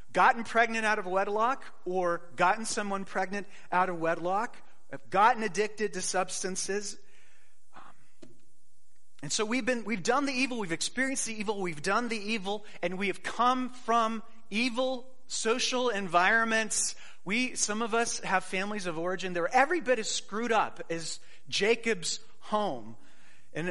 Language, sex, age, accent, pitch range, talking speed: English, male, 30-49, American, 175-230 Hz, 150 wpm